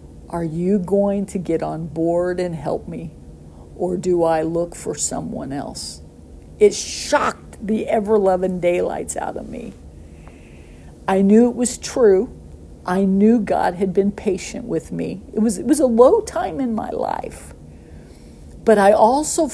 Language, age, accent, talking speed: English, 50-69, American, 155 wpm